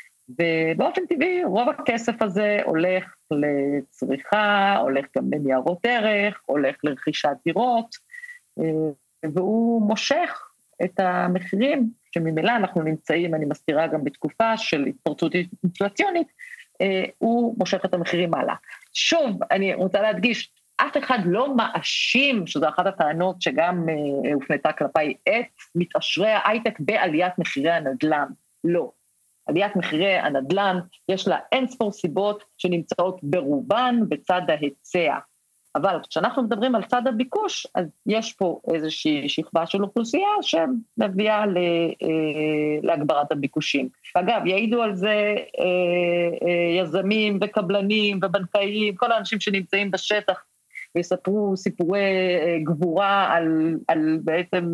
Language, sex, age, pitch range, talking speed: Hebrew, female, 50-69, 165-220 Hz, 105 wpm